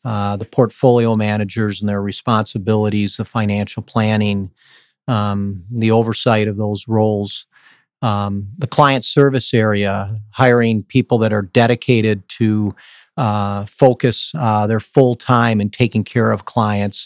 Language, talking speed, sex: English, 135 wpm, male